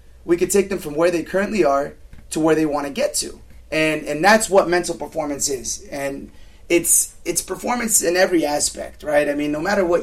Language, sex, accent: English, male, American